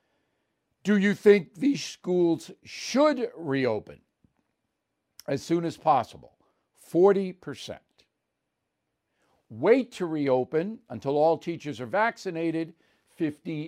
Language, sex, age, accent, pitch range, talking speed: English, male, 60-79, American, 125-175 Hz, 90 wpm